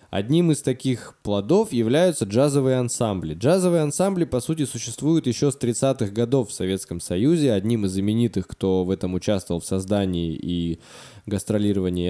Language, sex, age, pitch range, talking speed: Russian, male, 20-39, 100-140 Hz, 150 wpm